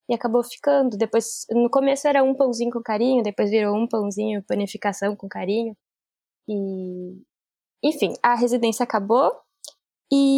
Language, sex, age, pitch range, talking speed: Portuguese, female, 10-29, 205-250 Hz, 140 wpm